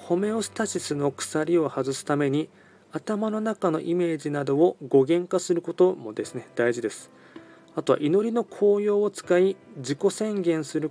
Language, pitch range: Japanese, 130-175 Hz